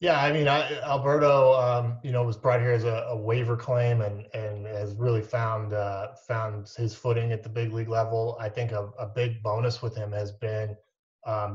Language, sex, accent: English, male, American